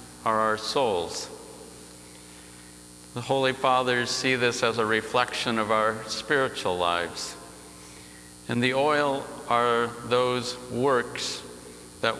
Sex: male